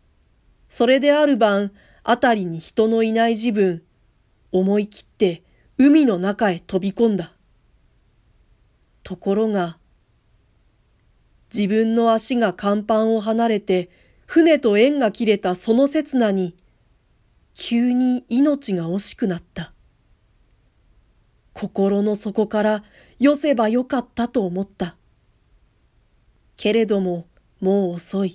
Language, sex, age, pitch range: Japanese, female, 40-59, 185-240 Hz